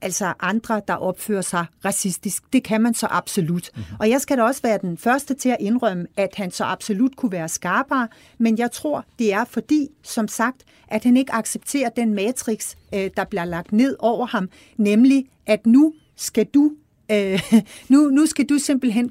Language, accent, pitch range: Danish, native, 190-245 Hz